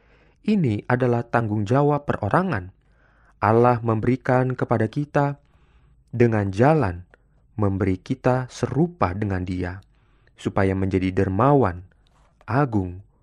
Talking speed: 90 wpm